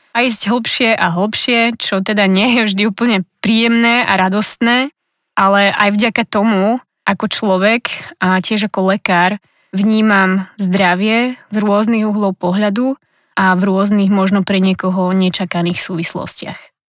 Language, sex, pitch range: Slovak, female, 190-220 Hz